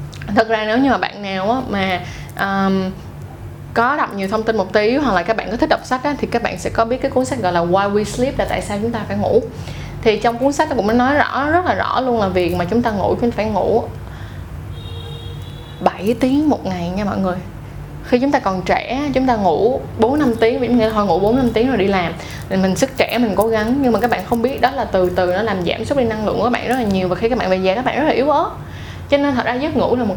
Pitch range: 185-245 Hz